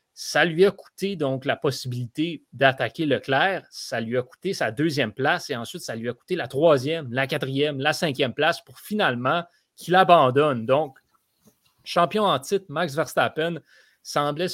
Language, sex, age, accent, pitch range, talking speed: French, male, 30-49, Canadian, 135-185 Hz, 165 wpm